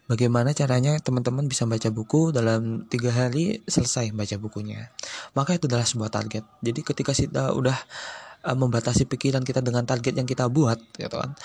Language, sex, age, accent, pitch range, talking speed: Indonesian, male, 20-39, native, 115-140 Hz, 150 wpm